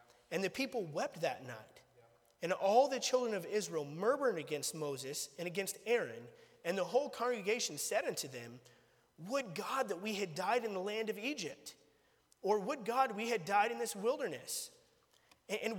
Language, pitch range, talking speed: English, 185-265 Hz, 175 wpm